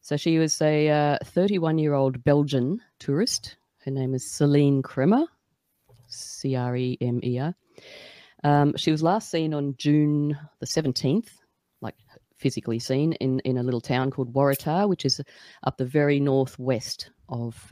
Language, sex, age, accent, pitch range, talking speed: English, female, 30-49, Australian, 120-150 Hz, 135 wpm